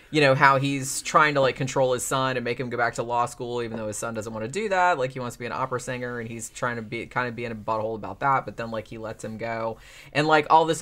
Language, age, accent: English, 20-39, American